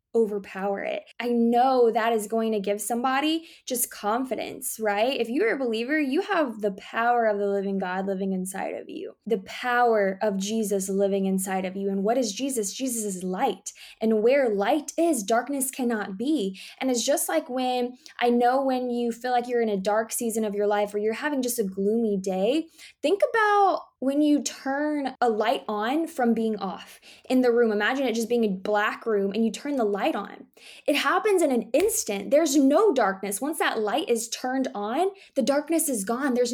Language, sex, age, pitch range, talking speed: English, female, 10-29, 215-275 Hz, 200 wpm